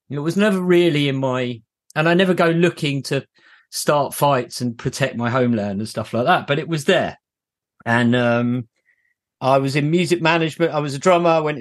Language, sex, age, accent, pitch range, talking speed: English, male, 40-59, British, 130-170 Hz, 200 wpm